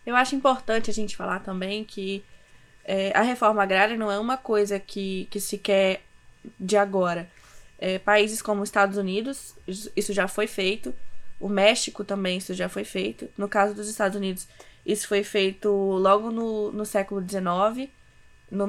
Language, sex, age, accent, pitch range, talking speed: Portuguese, female, 20-39, Brazilian, 195-230 Hz, 165 wpm